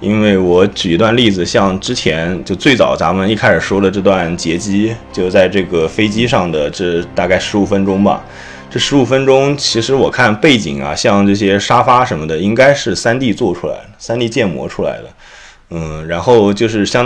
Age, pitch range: 20-39, 90-115 Hz